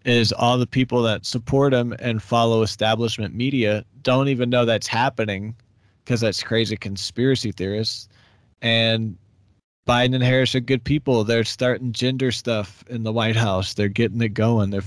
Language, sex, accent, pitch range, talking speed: English, male, American, 100-115 Hz, 165 wpm